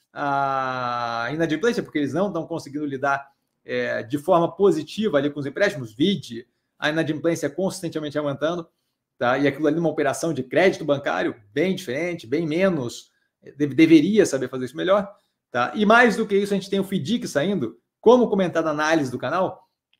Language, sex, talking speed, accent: Portuguese, male, 175 wpm, Brazilian